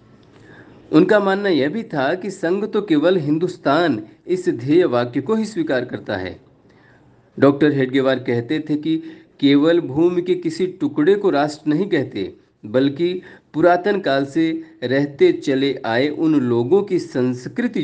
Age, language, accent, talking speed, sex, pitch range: 50-69, Hindi, native, 145 wpm, male, 130-190 Hz